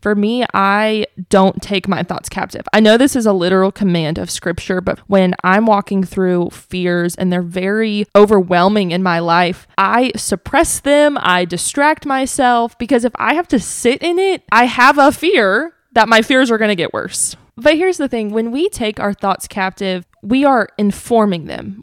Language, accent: English, American